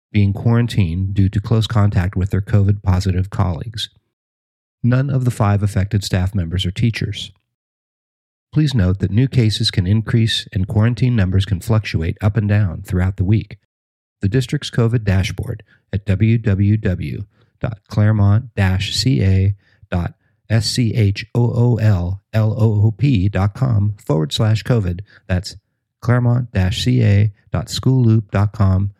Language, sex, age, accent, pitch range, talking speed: English, male, 50-69, American, 95-120 Hz, 100 wpm